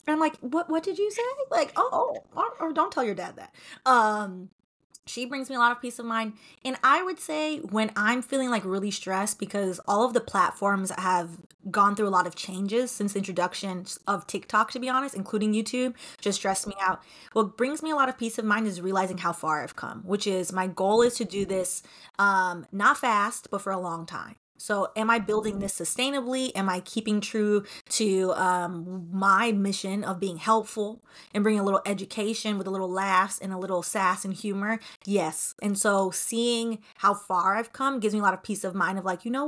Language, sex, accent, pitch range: English, female, American, 190-230 Hz